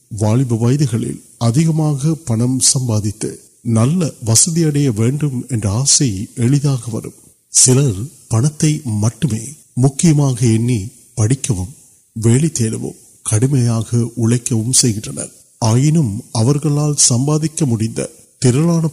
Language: Urdu